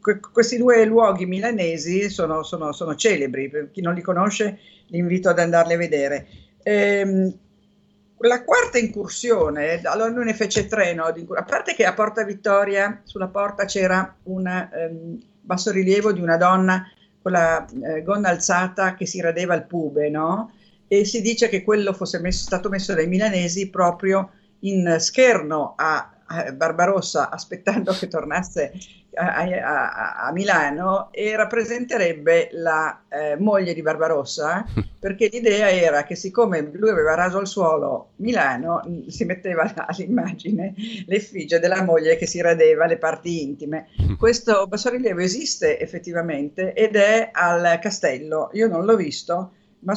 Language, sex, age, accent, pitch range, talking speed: Italian, female, 50-69, native, 170-210 Hz, 150 wpm